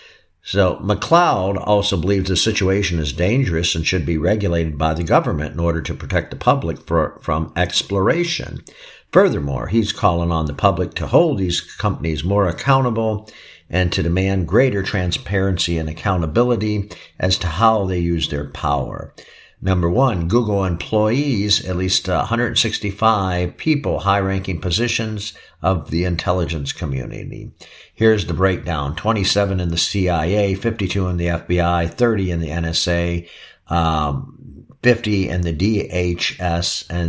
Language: English